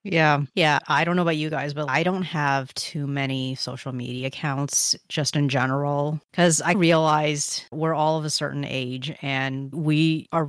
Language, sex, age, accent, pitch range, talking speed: English, female, 30-49, American, 135-155 Hz, 185 wpm